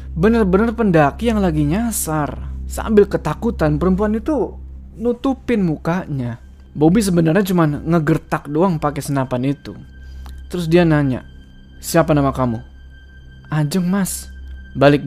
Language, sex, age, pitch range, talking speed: Indonesian, male, 20-39, 110-170 Hz, 110 wpm